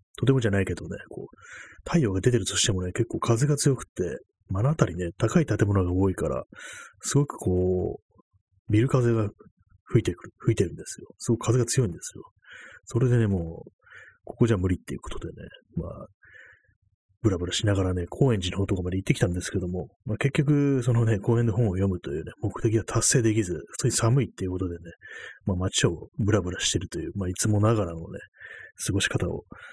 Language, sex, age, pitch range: Japanese, male, 30-49, 95-120 Hz